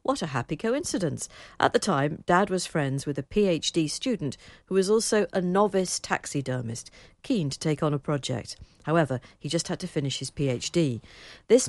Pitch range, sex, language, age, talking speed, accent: 140-185 Hz, female, English, 50-69, 180 wpm, British